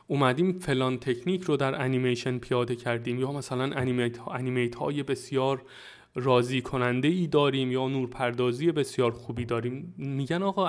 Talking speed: 145 wpm